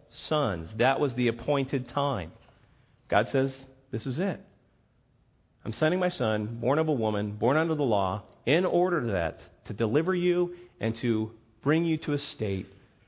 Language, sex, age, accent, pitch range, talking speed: English, male, 40-59, American, 110-150 Hz, 165 wpm